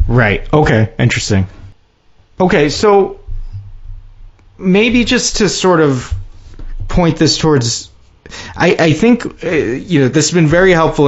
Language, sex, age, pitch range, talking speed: English, male, 30-49, 120-155 Hz, 125 wpm